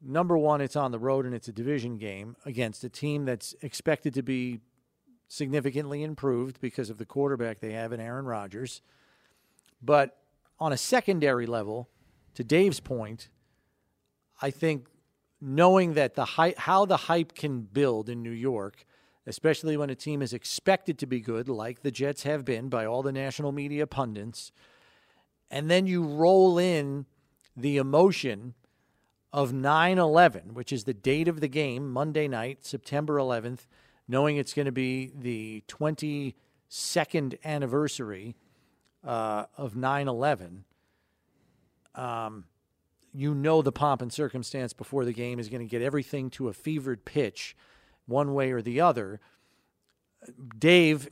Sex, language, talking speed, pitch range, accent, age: male, English, 150 wpm, 120-150 Hz, American, 40-59